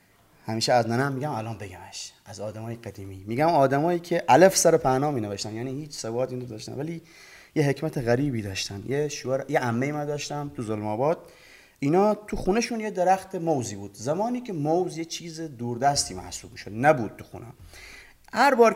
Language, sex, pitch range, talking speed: Persian, male, 120-170 Hz, 185 wpm